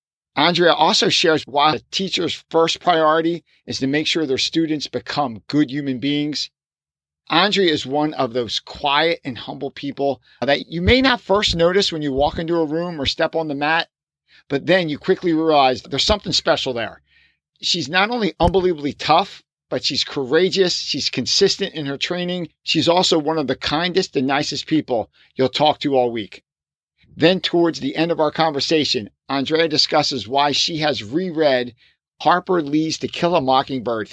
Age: 50-69